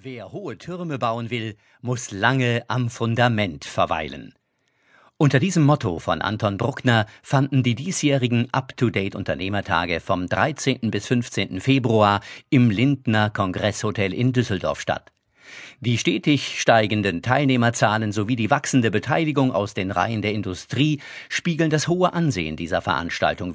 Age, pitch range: 50-69, 105-135 Hz